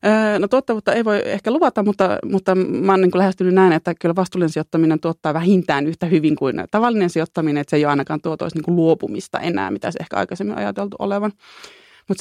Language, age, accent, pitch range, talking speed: Finnish, 30-49, native, 160-200 Hz, 200 wpm